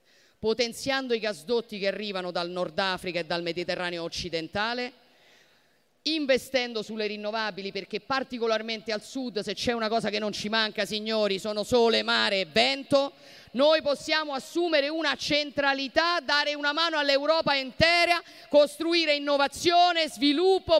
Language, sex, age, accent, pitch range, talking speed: Italian, female, 40-59, native, 205-290 Hz, 135 wpm